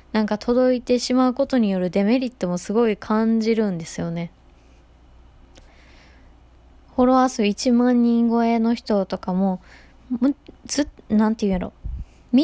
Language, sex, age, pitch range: Japanese, female, 20-39, 180-245 Hz